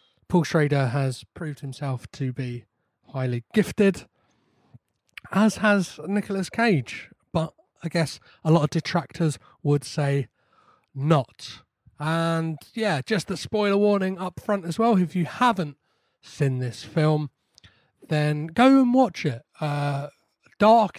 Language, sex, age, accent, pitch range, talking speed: English, male, 30-49, British, 145-185 Hz, 130 wpm